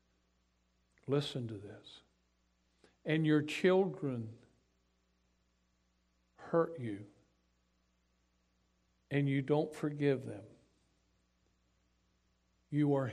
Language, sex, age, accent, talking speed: English, male, 60-79, American, 70 wpm